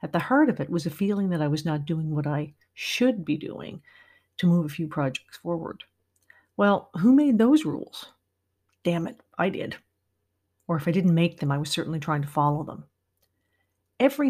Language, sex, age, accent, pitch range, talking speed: English, female, 50-69, American, 150-185 Hz, 195 wpm